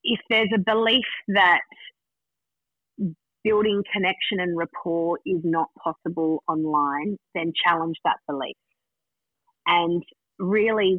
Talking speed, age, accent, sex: 105 wpm, 30-49, Australian, female